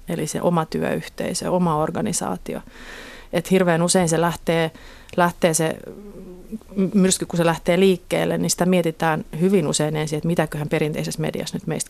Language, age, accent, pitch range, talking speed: Finnish, 30-49, native, 160-180 Hz, 145 wpm